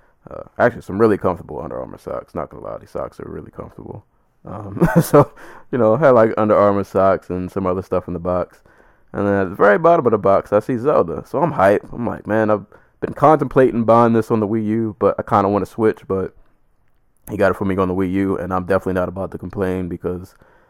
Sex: male